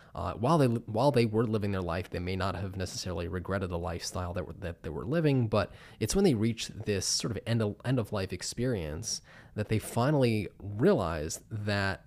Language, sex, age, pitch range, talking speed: English, male, 20-39, 95-120 Hz, 200 wpm